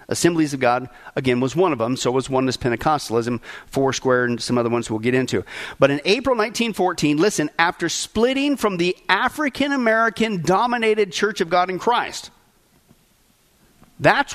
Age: 40-59